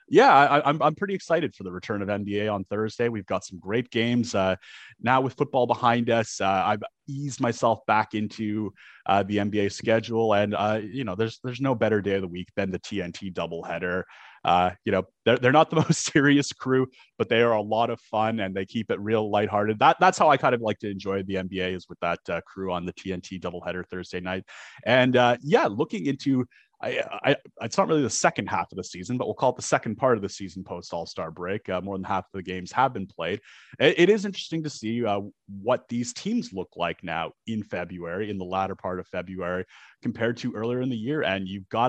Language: English